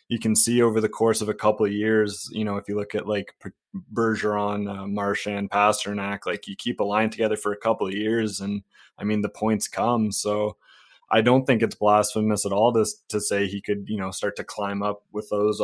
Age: 20-39